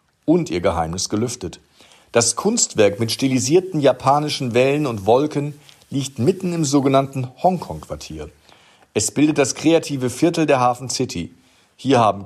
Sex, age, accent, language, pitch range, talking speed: male, 40-59, German, German, 105-150 Hz, 130 wpm